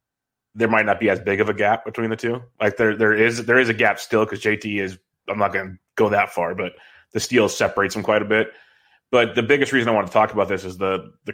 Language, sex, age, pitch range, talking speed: English, male, 30-49, 105-120 Hz, 275 wpm